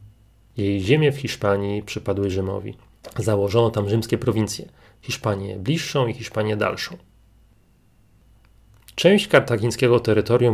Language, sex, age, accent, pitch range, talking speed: Polish, male, 30-49, native, 110-130 Hz, 100 wpm